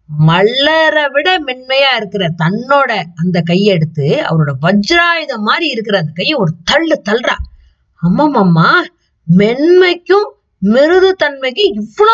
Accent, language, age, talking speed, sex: native, Tamil, 20-39, 60 wpm, female